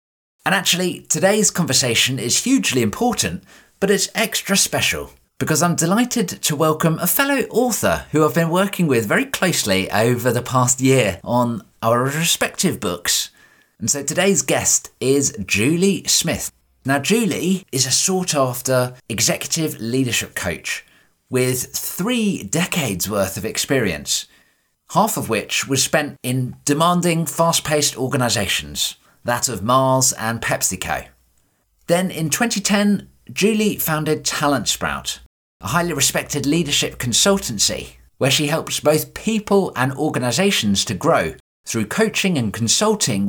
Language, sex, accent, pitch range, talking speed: English, male, British, 115-180 Hz, 135 wpm